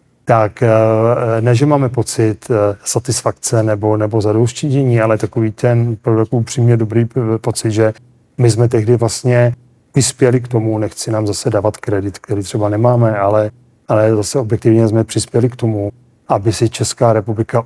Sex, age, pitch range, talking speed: male, 40-59, 105-120 Hz, 150 wpm